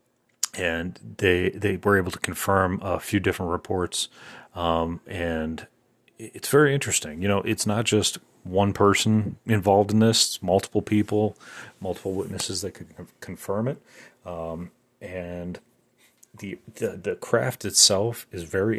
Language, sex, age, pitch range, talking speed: English, male, 30-49, 90-105 Hz, 140 wpm